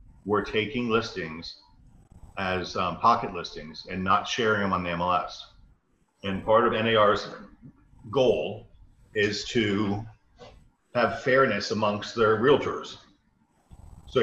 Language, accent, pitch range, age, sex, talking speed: English, American, 95-115 Hz, 40-59, male, 115 wpm